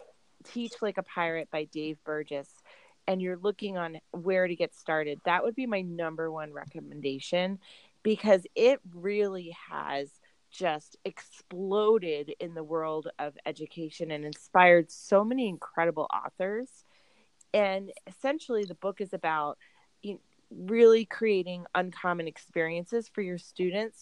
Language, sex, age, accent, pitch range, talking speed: English, female, 30-49, American, 160-210 Hz, 130 wpm